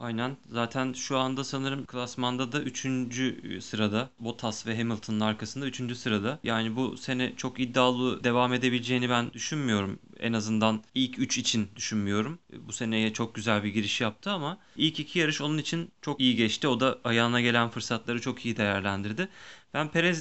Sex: male